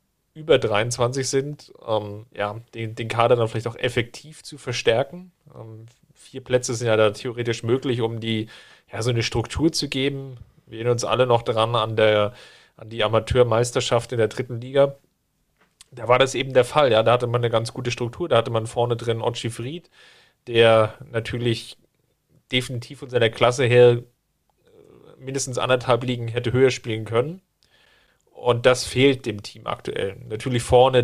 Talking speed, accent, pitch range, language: 170 wpm, German, 115-130 Hz, German